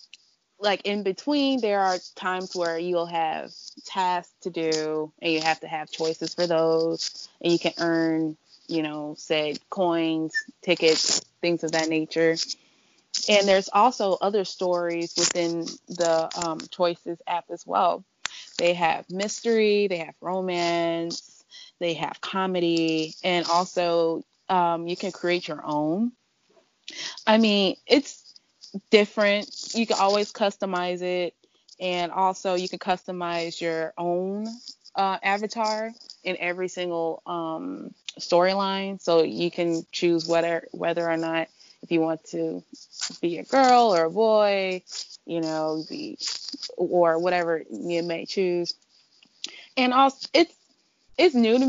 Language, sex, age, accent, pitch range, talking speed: English, female, 20-39, American, 165-205 Hz, 135 wpm